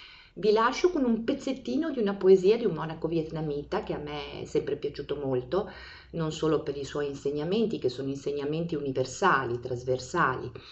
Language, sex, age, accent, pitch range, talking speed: Italian, female, 50-69, native, 135-200 Hz, 170 wpm